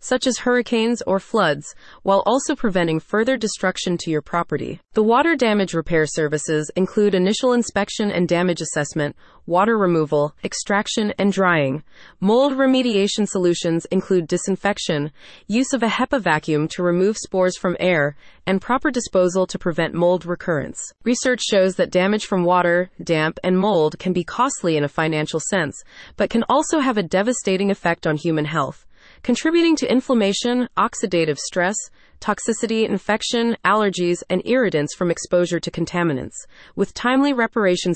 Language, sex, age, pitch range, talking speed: English, female, 30-49, 170-230 Hz, 150 wpm